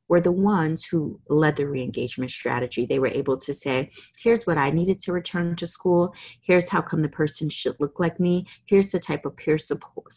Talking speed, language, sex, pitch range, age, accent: 210 wpm, English, female, 140-165 Hz, 30-49, American